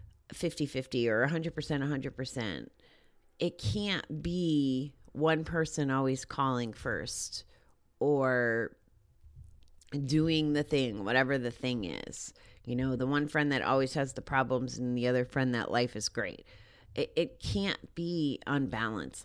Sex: female